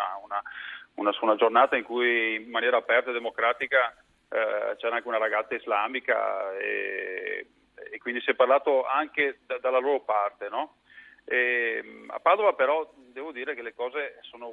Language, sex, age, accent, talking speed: Italian, male, 40-59, native, 165 wpm